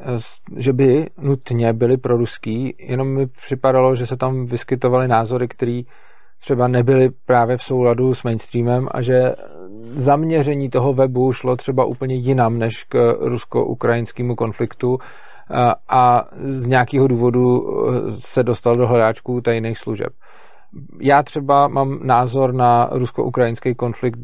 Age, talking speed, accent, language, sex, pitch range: 40-59, 130 wpm, native, Czech, male, 120-135 Hz